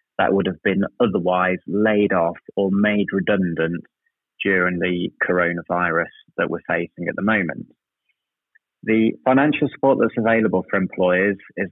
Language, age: English, 30-49